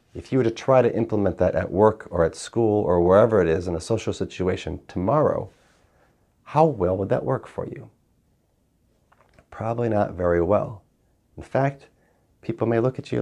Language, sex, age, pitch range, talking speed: English, male, 30-49, 105-150 Hz, 180 wpm